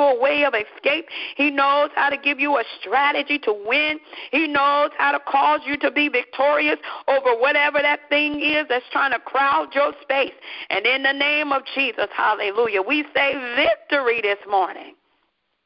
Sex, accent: female, American